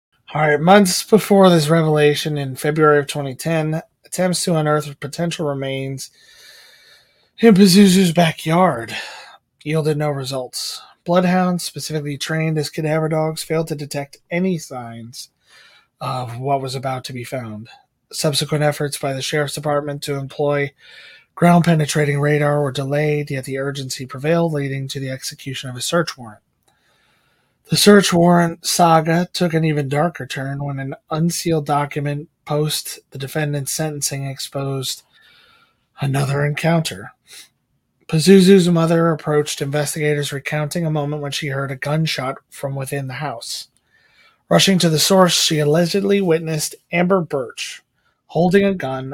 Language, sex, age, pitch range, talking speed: English, male, 30-49, 140-165 Hz, 135 wpm